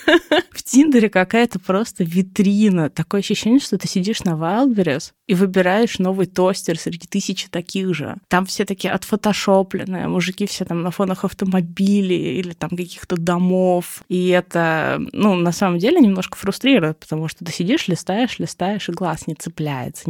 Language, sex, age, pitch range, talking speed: Russian, female, 20-39, 165-200 Hz, 155 wpm